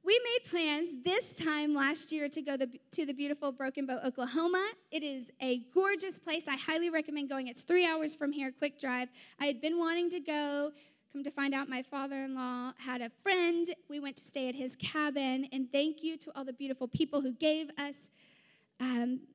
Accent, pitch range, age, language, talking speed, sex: American, 260-330 Hz, 10-29, English, 200 wpm, female